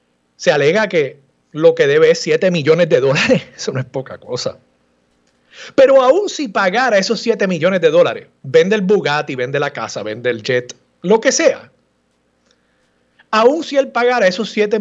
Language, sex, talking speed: Spanish, male, 175 wpm